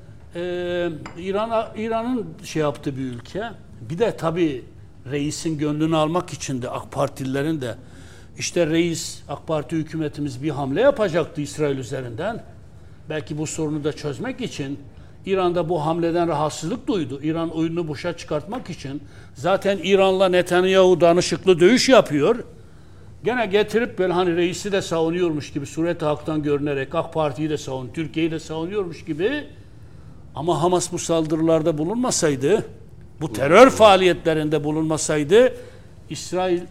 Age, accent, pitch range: 60-79, native, 140-185 Hz